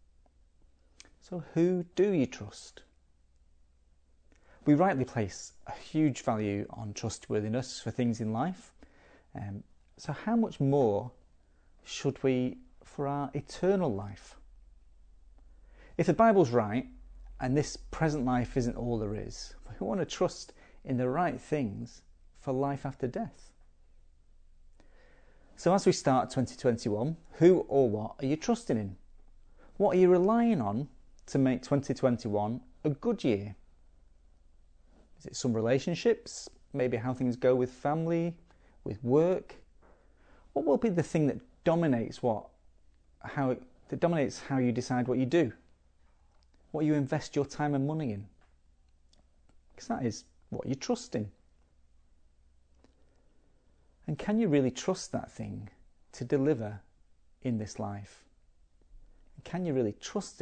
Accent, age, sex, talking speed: British, 40-59, male, 135 wpm